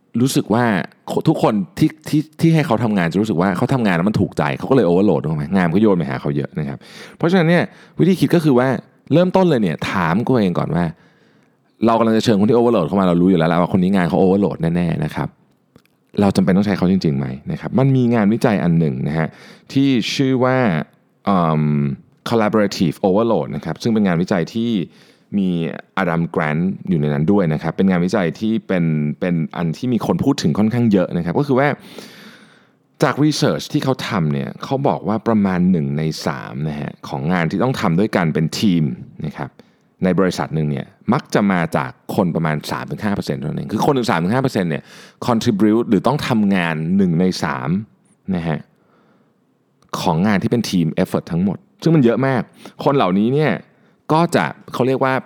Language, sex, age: Thai, male, 20-39